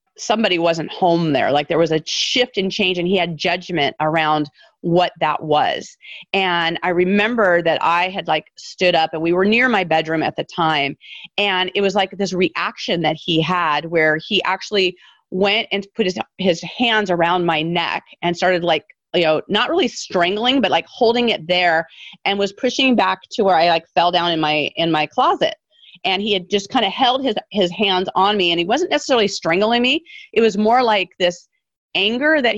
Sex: female